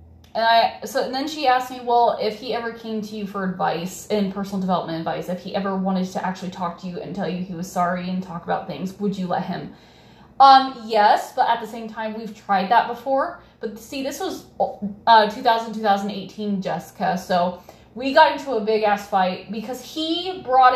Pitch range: 195-255 Hz